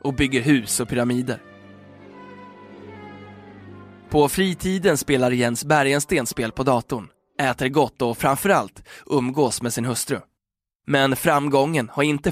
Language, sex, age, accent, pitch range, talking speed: Swedish, male, 20-39, native, 120-145 Hz, 120 wpm